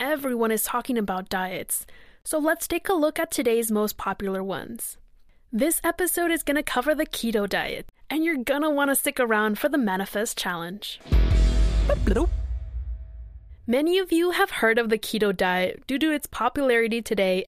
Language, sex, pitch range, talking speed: English, female, 205-300 Hz, 170 wpm